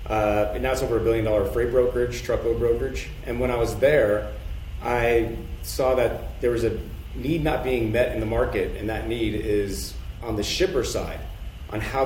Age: 40-59